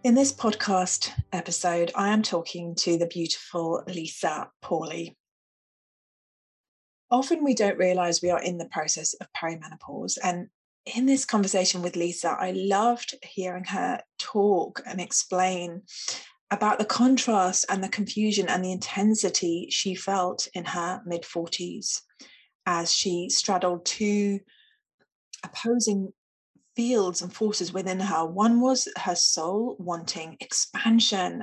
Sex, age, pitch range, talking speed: female, 30-49, 175-215 Hz, 125 wpm